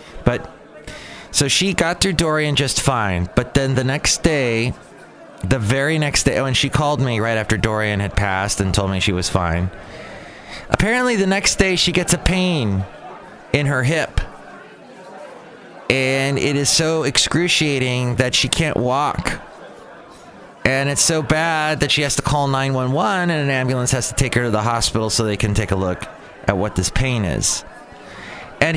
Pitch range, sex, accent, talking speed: 110-150 Hz, male, American, 175 wpm